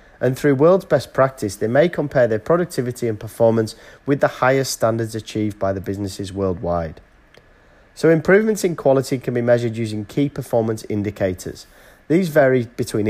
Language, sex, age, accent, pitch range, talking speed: English, male, 40-59, British, 105-140 Hz, 160 wpm